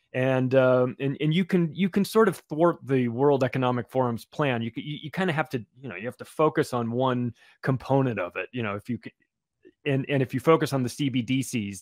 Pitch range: 125-155 Hz